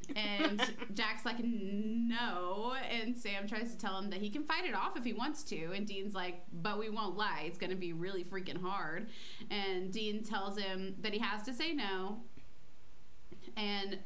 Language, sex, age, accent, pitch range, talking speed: English, female, 20-39, American, 185-240 Hz, 190 wpm